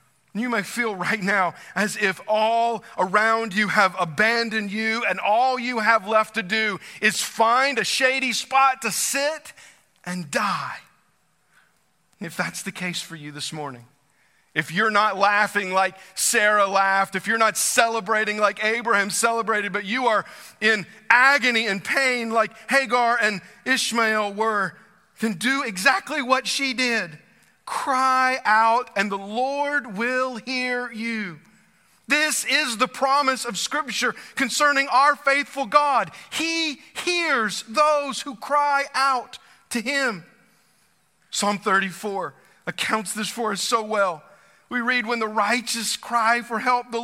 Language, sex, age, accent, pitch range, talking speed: English, male, 40-59, American, 195-250 Hz, 145 wpm